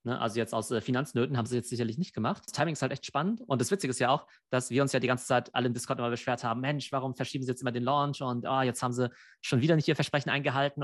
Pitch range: 115-140 Hz